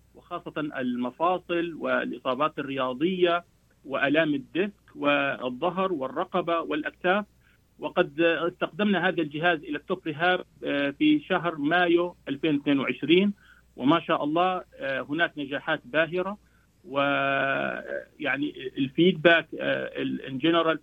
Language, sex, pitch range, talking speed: Arabic, male, 140-180 Hz, 80 wpm